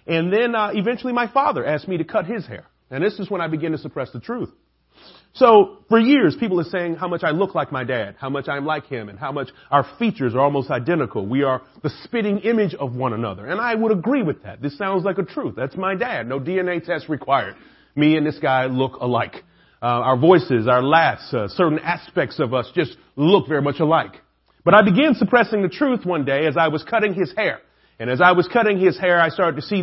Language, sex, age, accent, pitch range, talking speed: English, male, 30-49, American, 155-215 Hz, 240 wpm